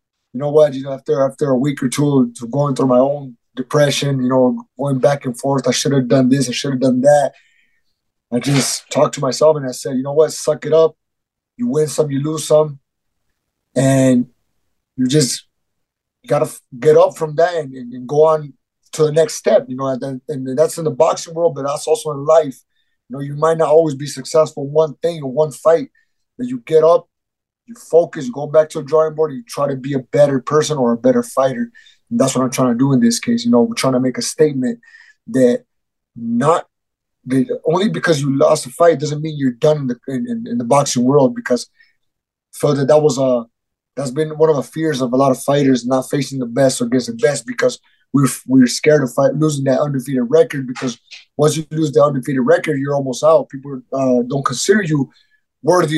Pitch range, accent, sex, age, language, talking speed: 130-160 Hz, American, male, 30-49, English, 230 wpm